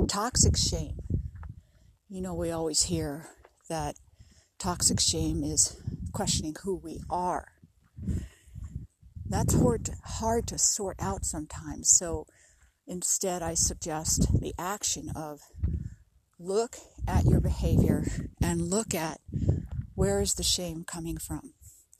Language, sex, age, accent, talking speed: English, female, 60-79, American, 115 wpm